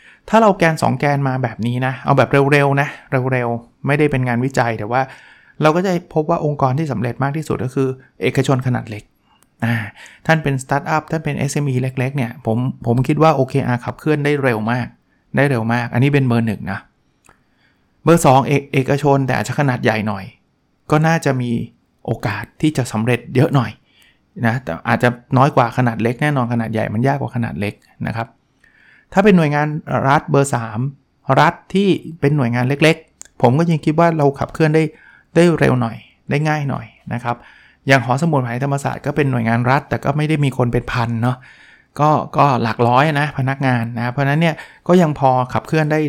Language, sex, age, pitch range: Thai, male, 20-39, 120-150 Hz